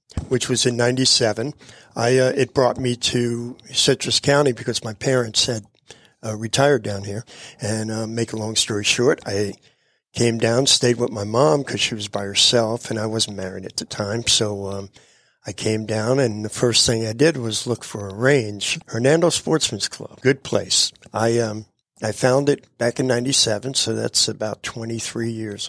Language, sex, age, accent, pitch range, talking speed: English, male, 50-69, American, 110-135 Hz, 185 wpm